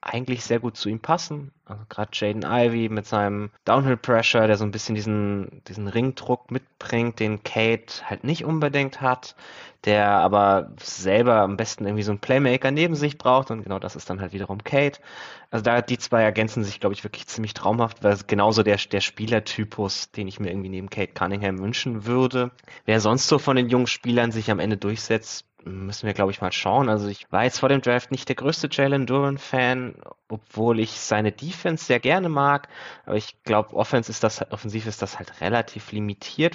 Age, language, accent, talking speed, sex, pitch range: 20-39, German, German, 195 wpm, male, 100-125 Hz